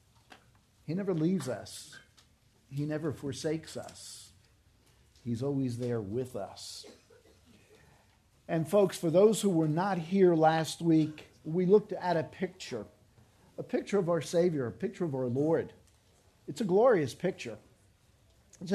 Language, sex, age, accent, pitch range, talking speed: English, male, 50-69, American, 110-170 Hz, 140 wpm